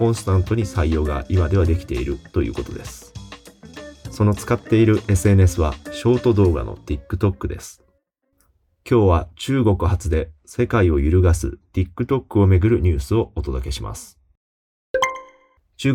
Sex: male